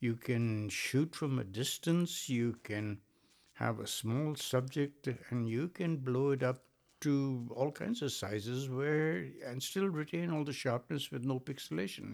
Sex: male